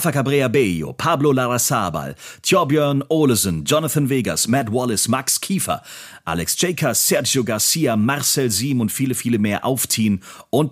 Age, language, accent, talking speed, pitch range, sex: 30-49, German, German, 140 wpm, 100-140 Hz, male